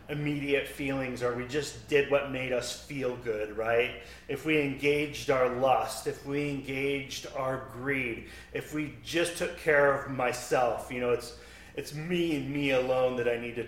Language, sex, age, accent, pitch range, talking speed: English, male, 30-49, American, 120-170 Hz, 180 wpm